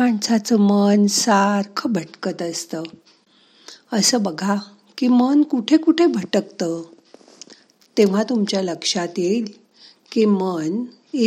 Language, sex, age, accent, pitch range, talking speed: Marathi, female, 50-69, native, 180-245 Hz, 60 wpm